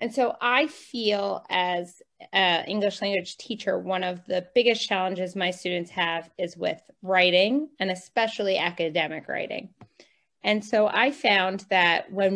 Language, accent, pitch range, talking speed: English, American, 175-210 Hz, 145 wpm